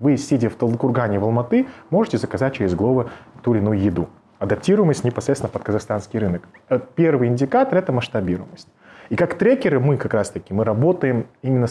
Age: 20-39